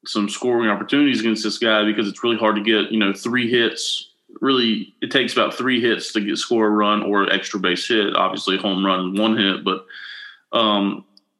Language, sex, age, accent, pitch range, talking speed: English, male, 30-49, American, 100-115 Hz, 195 wpm